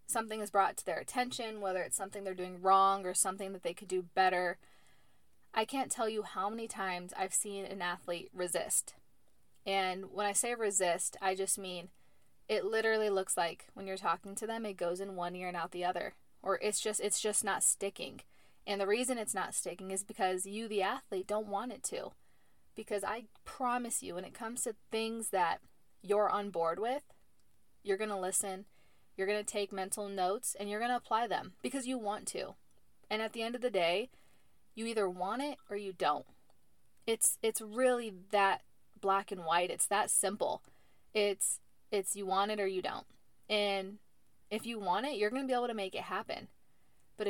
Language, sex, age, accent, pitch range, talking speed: English, female, 20-39, American, 190-220 Hz, 205 wpm